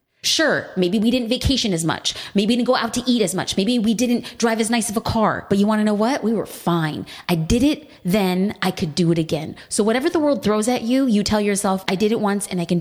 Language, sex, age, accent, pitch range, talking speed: English, female, 20-39, American, 175-225 Hz, 280 wpm